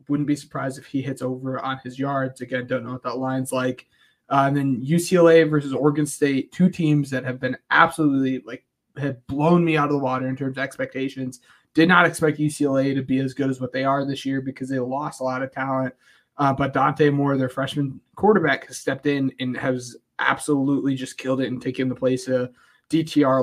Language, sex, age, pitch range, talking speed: English, male, 20-39, 130-150 Hz, 220 wpm